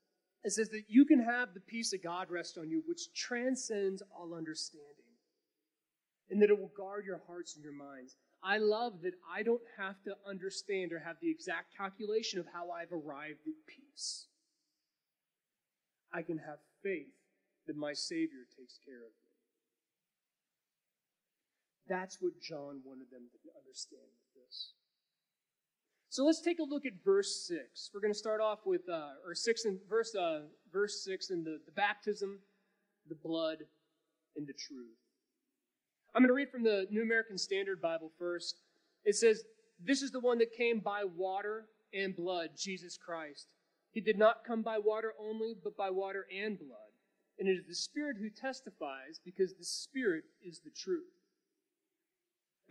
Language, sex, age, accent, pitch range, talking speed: English, male, 30-49, American, 175-255 Hz, 170 wpm